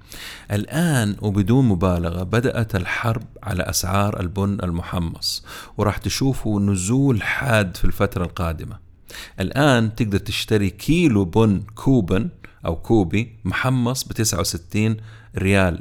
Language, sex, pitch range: Arabic, male, 95-115 Hz